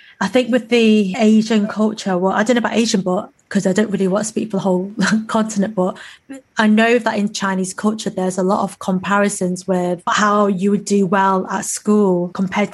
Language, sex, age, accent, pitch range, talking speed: English, female, 20-39, British, 190-225 Hz, 215 wpm